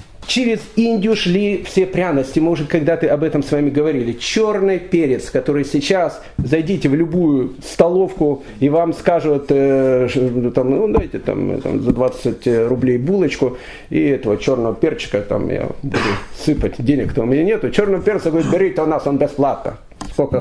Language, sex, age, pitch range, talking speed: Russian, male, 40-59, 150-195 Hz, 155 wpm